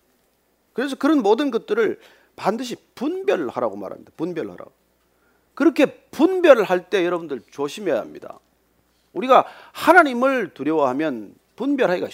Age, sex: 40-59, male